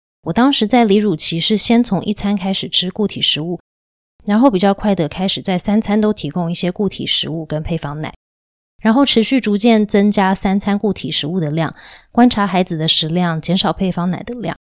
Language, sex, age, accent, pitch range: Chinese, female, 20-39, native, 160-215 Hz